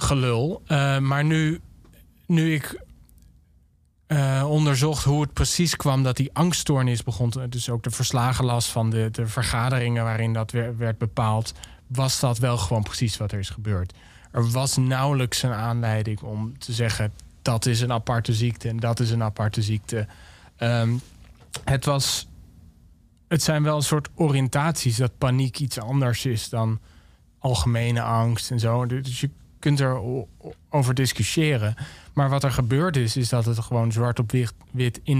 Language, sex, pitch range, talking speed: Dutch, male, 110-135 Hz, 165 wpm